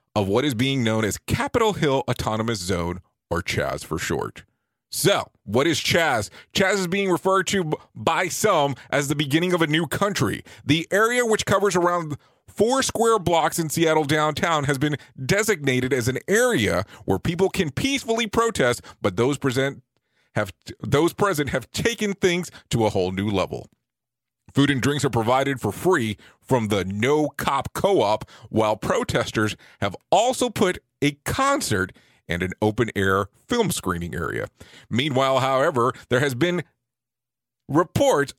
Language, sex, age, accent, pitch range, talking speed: English, male, 30-49, American, 120-175 Hz, 155 wpm